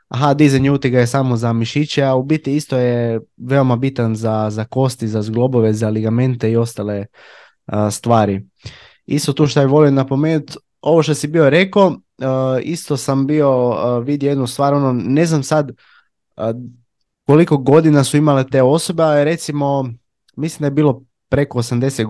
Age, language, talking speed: 20-39, Croatian, 170 wpm